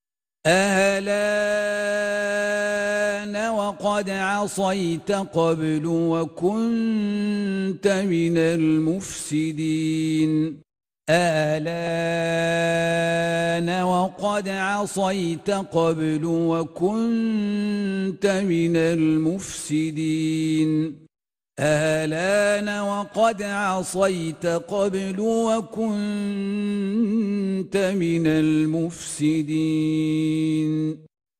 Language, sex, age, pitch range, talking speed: Arabic, male, 50-69, 185-230 Hz, 40 wpm